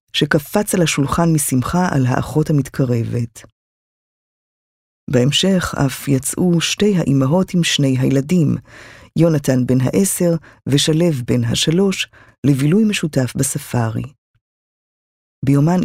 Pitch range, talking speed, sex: 130-165 Hz, 95 wpm, female